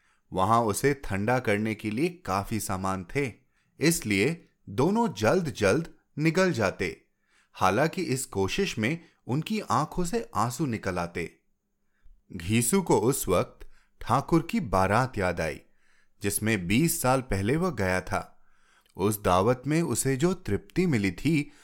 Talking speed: 135 wpm